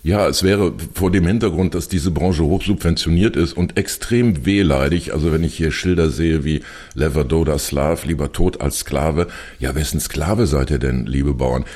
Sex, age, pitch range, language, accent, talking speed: male, 60-79, 75-85 Hz, German, German, 185 wpm